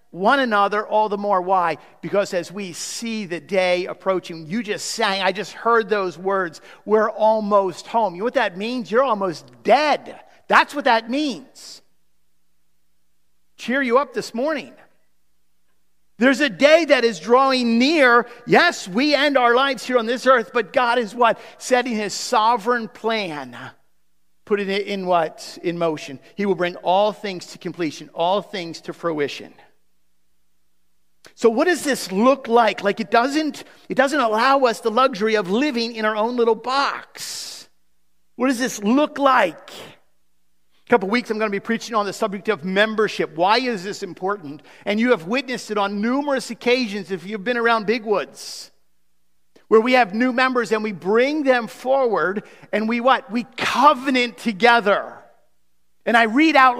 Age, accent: 50-69, American